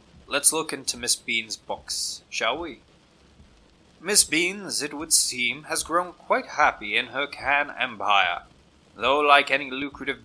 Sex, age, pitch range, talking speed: male, 20-39, 115-150 Hz, 145 wpm